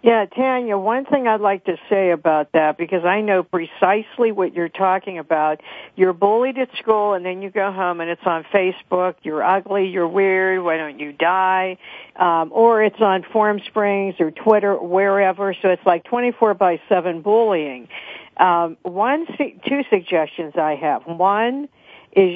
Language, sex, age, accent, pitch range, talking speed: English, female, 60-79, American, 180-220 Hz, 175 wpm